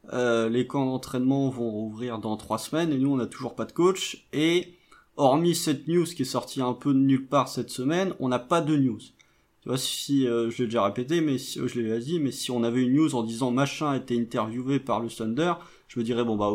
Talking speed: 260 wpm